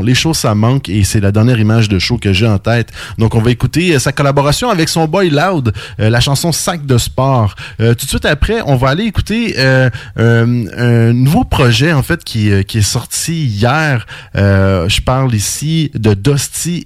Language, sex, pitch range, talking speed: English, male, 105-145 Hz, 215 wpm